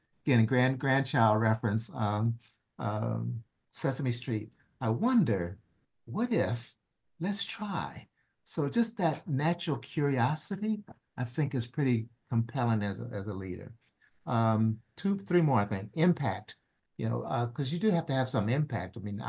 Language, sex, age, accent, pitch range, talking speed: English, male, 60-79, American, 110-130 Hz, 150 wpm